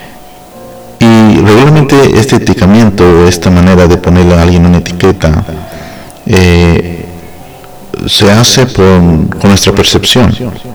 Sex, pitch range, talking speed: male, 85-100 Hz, 95 wpm